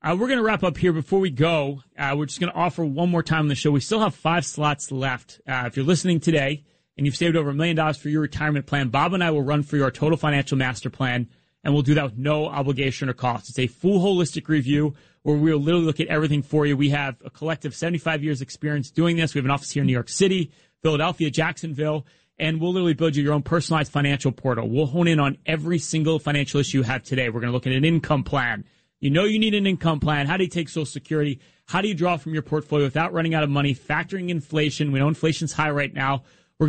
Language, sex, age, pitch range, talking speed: English, male, 30-49, 145-170 Hz, 265 wpm